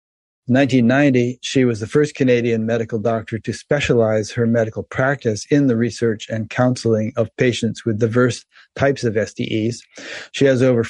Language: English